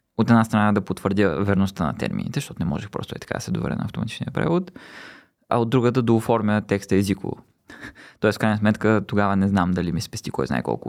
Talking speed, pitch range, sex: 215 wpm, 100-140 Hz, male